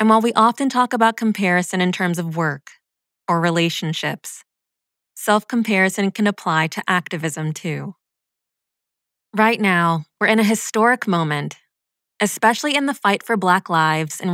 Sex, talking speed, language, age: female, 140 wpm, English, 20-39